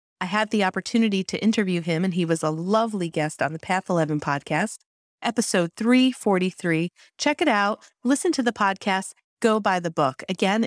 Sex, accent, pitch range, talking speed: female, American, 170-230 Hz, 180 wpm